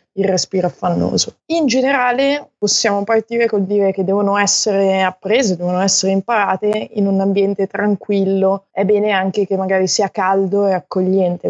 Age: 20-39